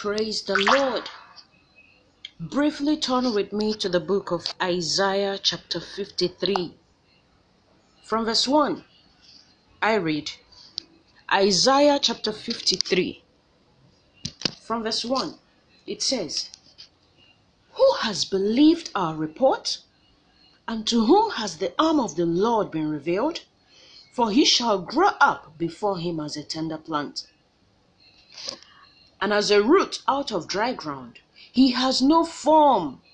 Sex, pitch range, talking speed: female, 190-290 Hz, 120 wpm